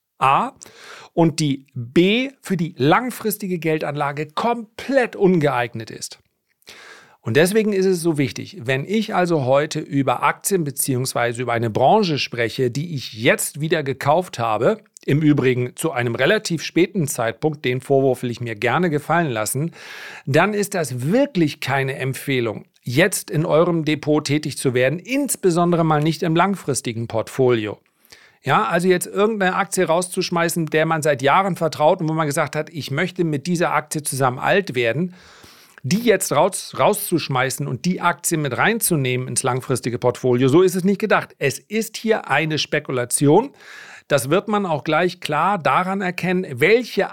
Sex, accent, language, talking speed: male, German, German, 155 wpm